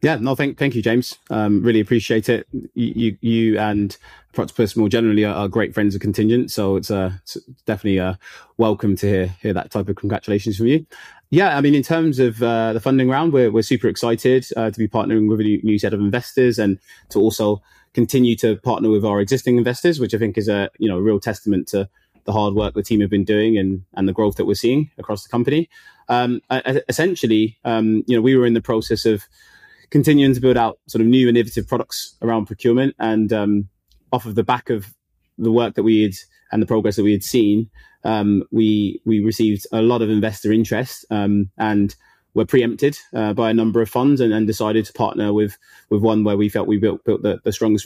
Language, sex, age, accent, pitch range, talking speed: English, male, 20-39, British, 105-120 Hz, 225 wpm